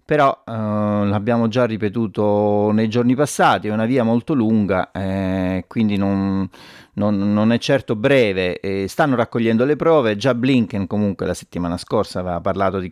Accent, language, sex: native, Italian, male